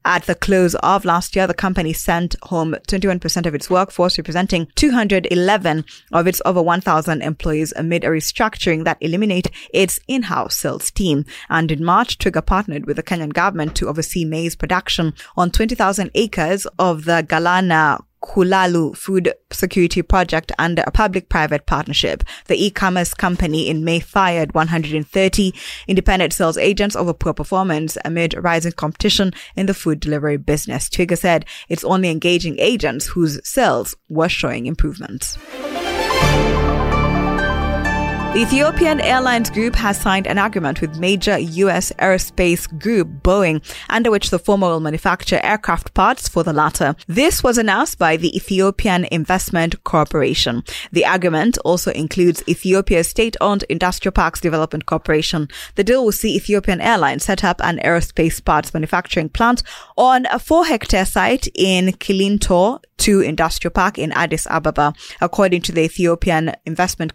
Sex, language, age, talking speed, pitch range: female, English, 20-39, 145 wpm, 160-195 Hz